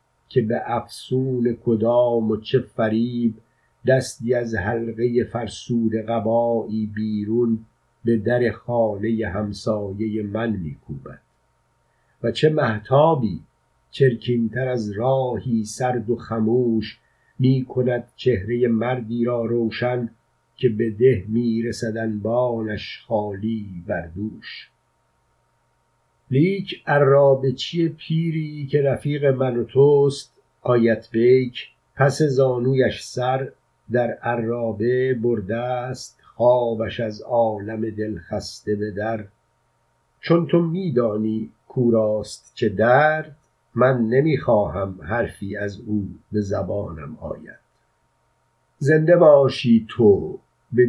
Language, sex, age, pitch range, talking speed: Persian, male, 50-69, 110-125 Hz, 100 wpm